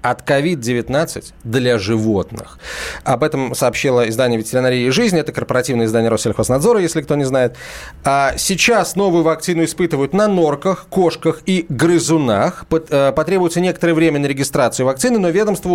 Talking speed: 135 wpm